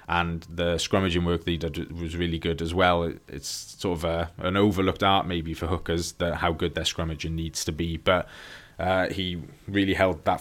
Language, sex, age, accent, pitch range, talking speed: English, male, 20-39, British, 85-95 Hz, 200 wpm